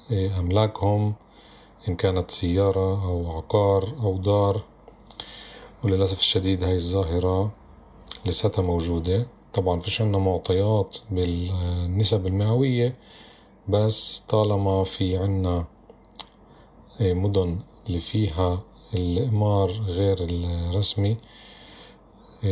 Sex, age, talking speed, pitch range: male, 40-59, 80 wpm, 90-110 Hz